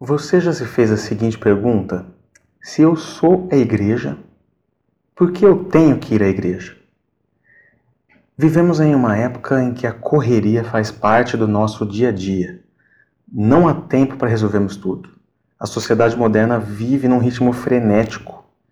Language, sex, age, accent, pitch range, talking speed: Portuguese, male, 30-49, Brazilian, 105-135 Hz, 155 wpm